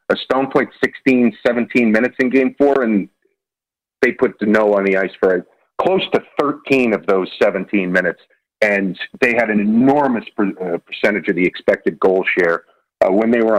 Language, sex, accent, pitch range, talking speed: English, male, American, 110-160 Hz, 180 wpm